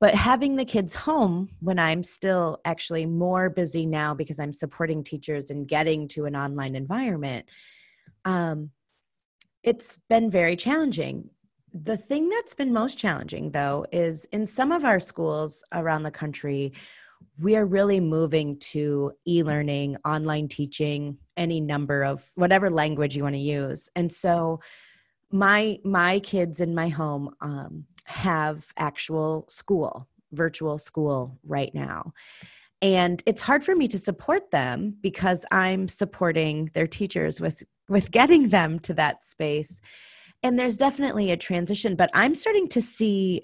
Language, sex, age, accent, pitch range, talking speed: English, female, 30-49, American, 150-200 Hz, 150 wpm